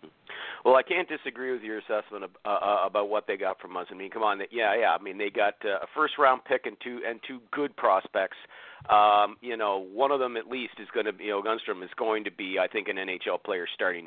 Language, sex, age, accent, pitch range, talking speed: English, male, 50-69, American, 110-140 Hz, 250 wpm